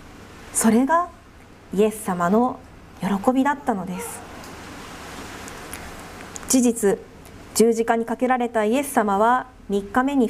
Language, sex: Japanese, female